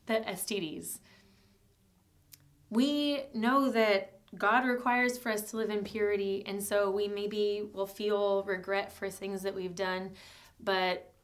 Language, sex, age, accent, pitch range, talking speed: English, female, 20-39, American, 190-225 Hz, 140 wpm